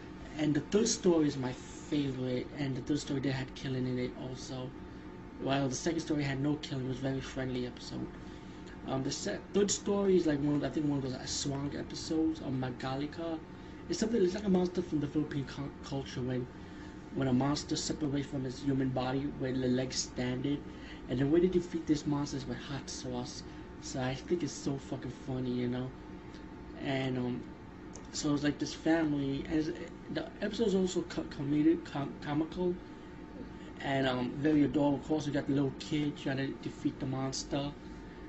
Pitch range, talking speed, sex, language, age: 130-150 Hz, 195 wpm, male, English, 30-49